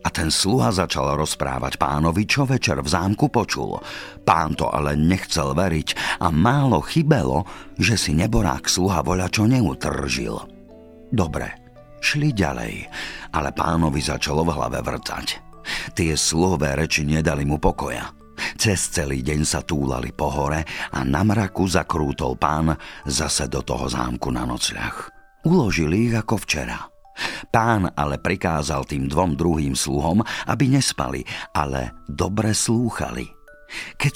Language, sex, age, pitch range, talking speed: Slovak, male, 50-69, 75-110 Hz, 135 wpm